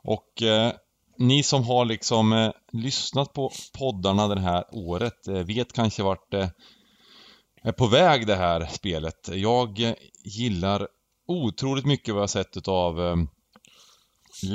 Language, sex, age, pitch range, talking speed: Swedish, male, 20-39, 105-135 Hz, 145 wpm